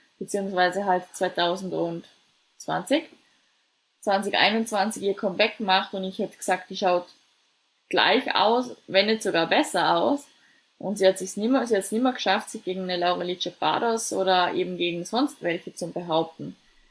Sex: female